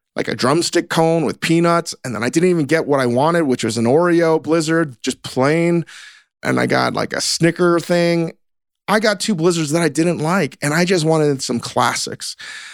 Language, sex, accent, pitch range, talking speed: English, male, American, 130-170 Hz, 205 wpm